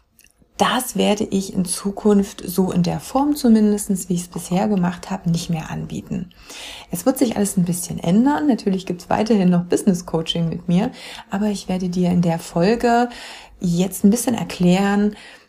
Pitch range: 170-205 Hz